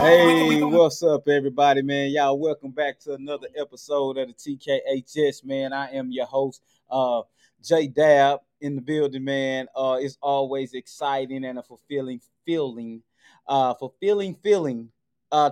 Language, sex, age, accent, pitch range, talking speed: English, male, 20-39, American, 135-150 Hz, 145 wpm